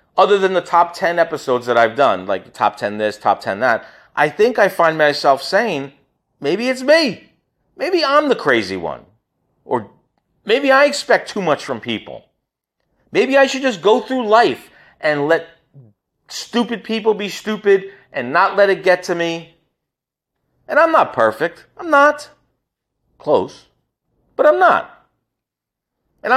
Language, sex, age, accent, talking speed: English, male, 40-59, American, 155 wpm